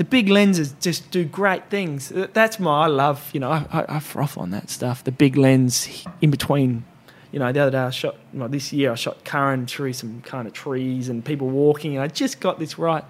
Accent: Australian